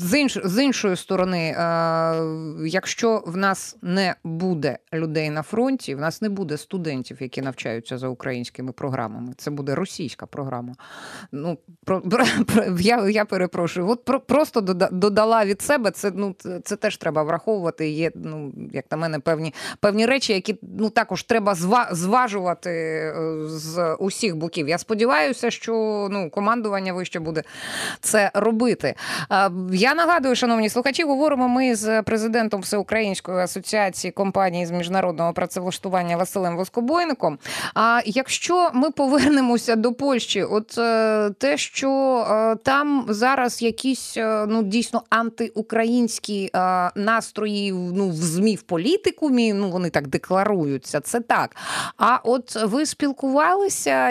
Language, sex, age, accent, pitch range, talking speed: Ukrainian, female, 20-39, native, 170-230 Hz, 130 wpm